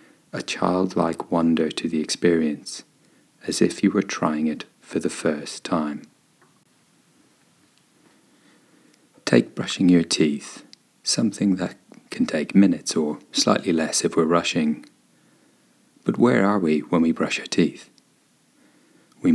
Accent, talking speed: British, 125 wpm